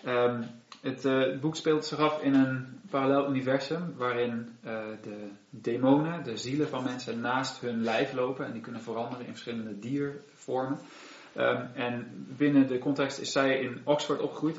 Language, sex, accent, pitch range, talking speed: Dutch, male, Dutch, 115-135 Hz, 165 wpm